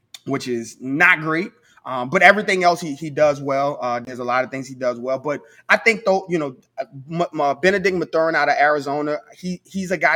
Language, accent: English, American